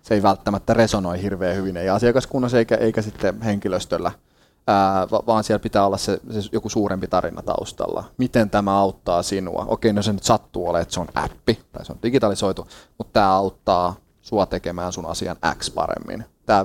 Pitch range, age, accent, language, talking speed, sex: 95-110 Hz, 30-49, native, Finnish, 185 wpm, male